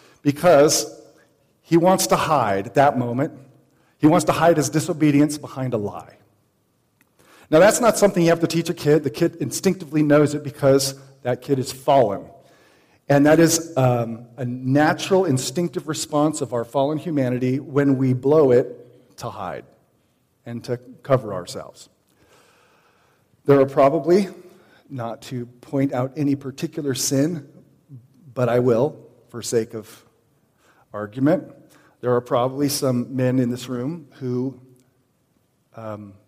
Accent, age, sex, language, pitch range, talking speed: American, 40-59, male, English, 120-145 Hz, 140 wpm